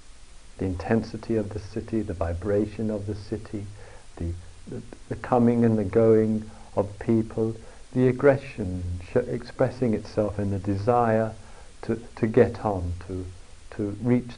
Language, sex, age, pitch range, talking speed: English, male, 50-69, 100-130 Hz, 140 wpm